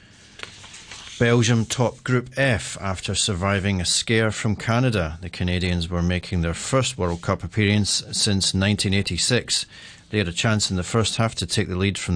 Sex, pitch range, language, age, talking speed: male, 90-110 Hz, English, 40-59, 170 wpm